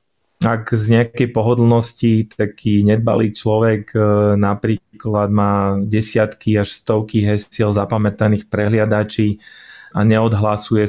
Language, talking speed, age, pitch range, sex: Slovak, 95 wpm, 20-39, 105-115 Hz, male